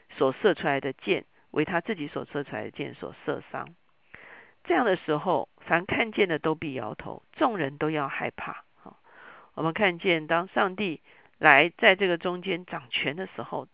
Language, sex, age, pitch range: Chinese, female, 50-69, 155-210 Hz